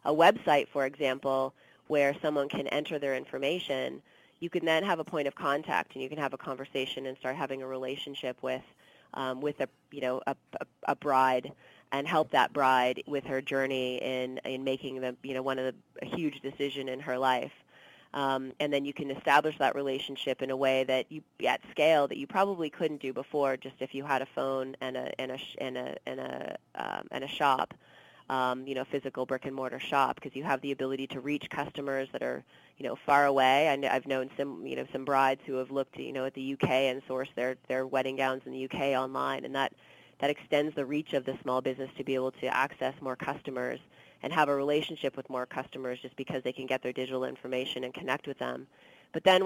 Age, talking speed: 30-49, 220 wpm